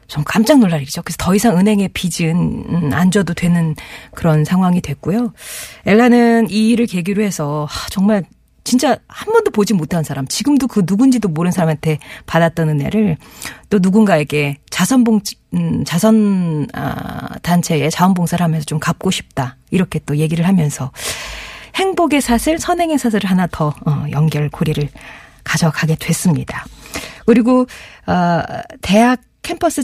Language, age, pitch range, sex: Korean, 40-59, 155-220 Hz, female